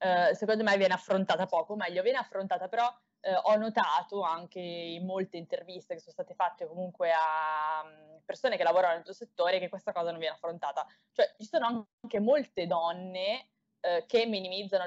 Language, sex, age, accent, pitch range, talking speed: Italian, female, 20-39, native, 180-220 Hz, 165 wpm